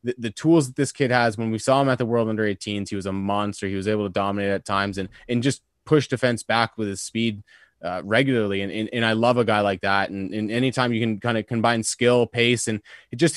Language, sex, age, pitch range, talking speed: English, male, 20-39, 110-125 Hz, 265 wpm